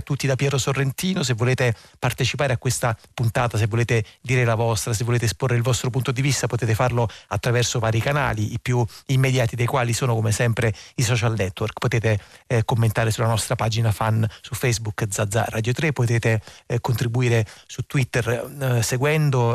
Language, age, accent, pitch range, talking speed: Italian, 30-49, native, 110-130 Hz, 180 wpm